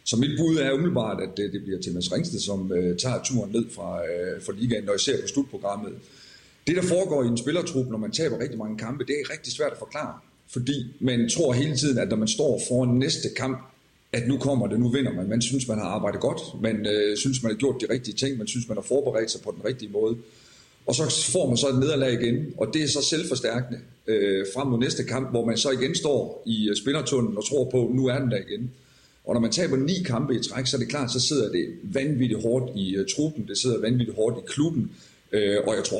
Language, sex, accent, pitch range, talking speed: Danish, male, native, 110-135 Hz, 240 wpm